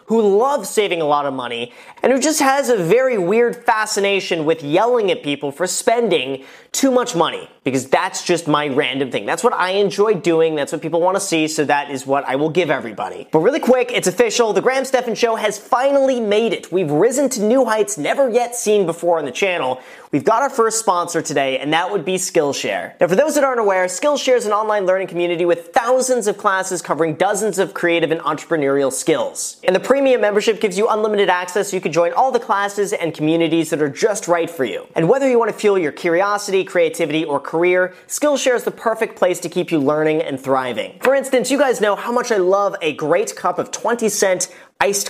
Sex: male